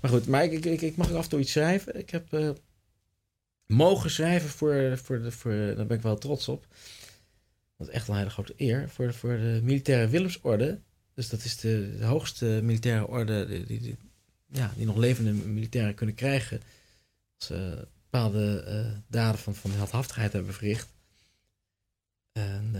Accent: Dutch